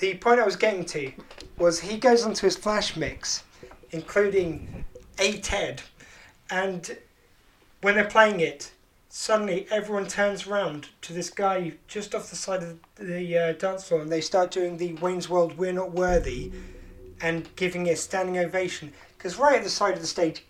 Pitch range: 170-200 Hz